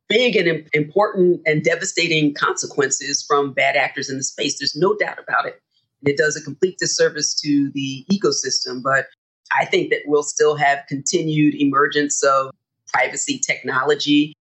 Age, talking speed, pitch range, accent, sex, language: 40-59, 155 wpm, 140-165 Hz, American, female, English